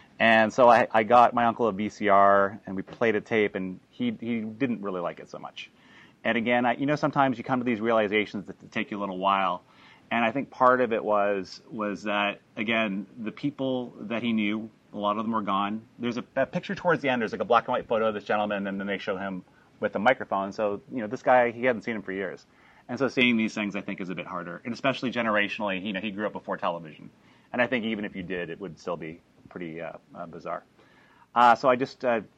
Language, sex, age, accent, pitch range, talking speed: English, male, 30-49, American, 95-115 Hz, 255 wpm